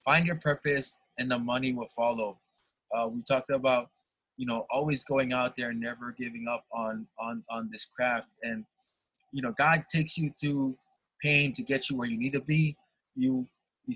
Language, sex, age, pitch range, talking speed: English, male, 20-39, 115-150 Hz, 190 wpm